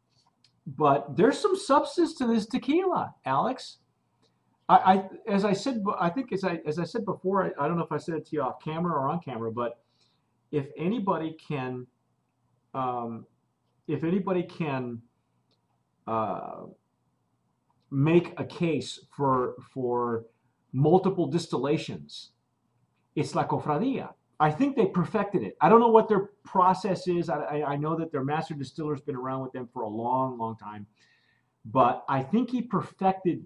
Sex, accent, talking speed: male, American, 160 wpm